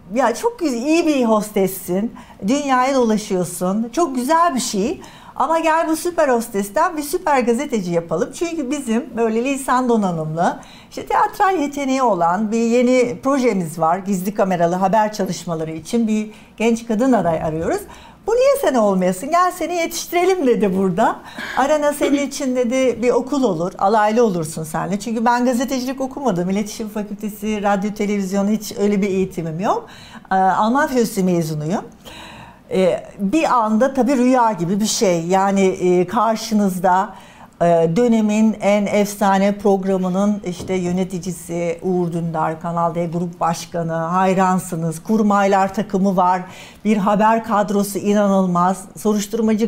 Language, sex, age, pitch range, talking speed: Turkish, female, 60-79, 190-255 Hz, 130 wpm